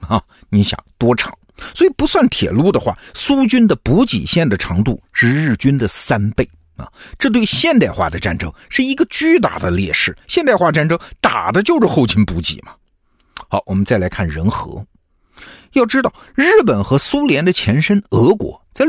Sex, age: male, 50-69